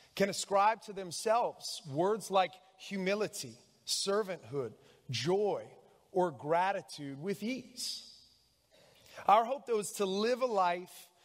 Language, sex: English, male